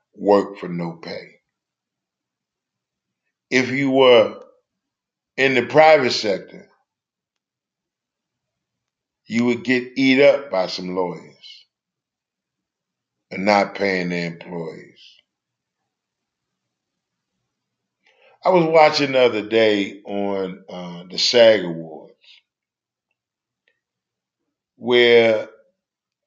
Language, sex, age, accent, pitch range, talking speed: English, male, 50-69, American, 90-120 Hz, 80 wpm